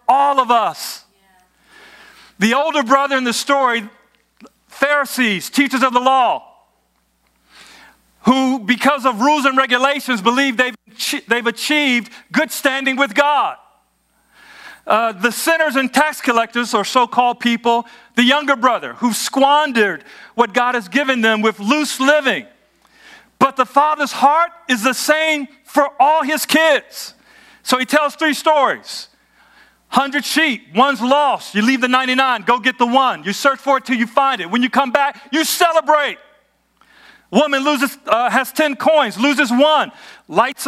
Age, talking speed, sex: 50-69, 150 wpm, male